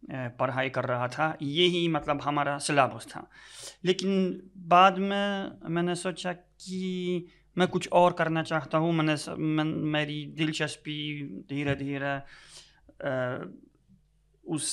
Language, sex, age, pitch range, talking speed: Hindi, male, 30-49, 140-170 Hz, 110 wpm